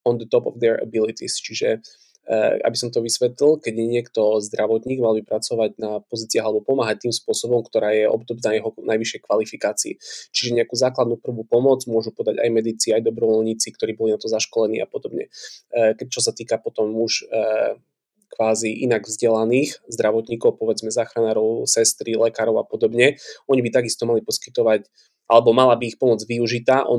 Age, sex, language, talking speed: 20-39, male, Slovak, 175 wpm